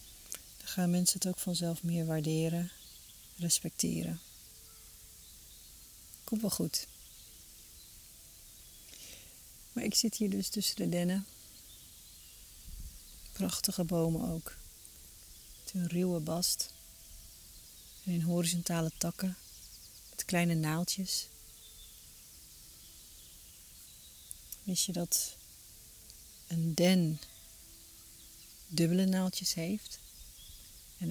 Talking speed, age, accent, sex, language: 80 wpm, 40-59, Dutch, female, Dutch